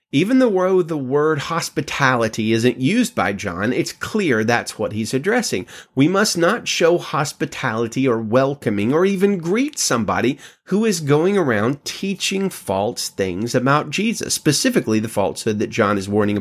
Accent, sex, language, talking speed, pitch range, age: American, male, English, 155 wpm, 115-185 Hz, 30-49